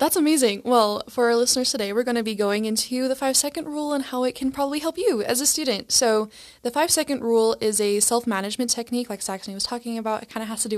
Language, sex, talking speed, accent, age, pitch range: English, female, 260 wpm, American, 10-29, 200-245 Hz